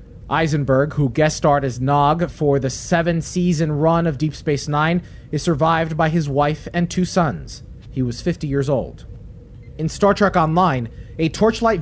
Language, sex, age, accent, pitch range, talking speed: English, male, 30-49, American, 135-175 Hz, 170 wpm